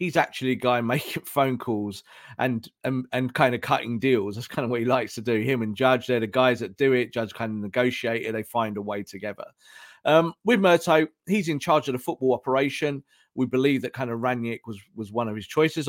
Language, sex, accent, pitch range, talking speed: English, male, British, 115-155 Hz, 235 wpm